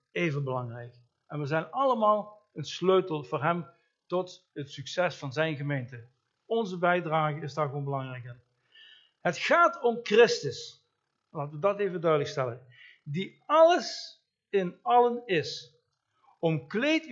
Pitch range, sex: 145-230 Hz, male